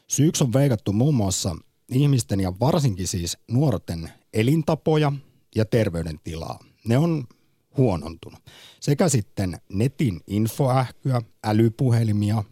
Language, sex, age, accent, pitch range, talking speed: Finnish, male, 50-69, native, 95-130 Hz, 100 wpm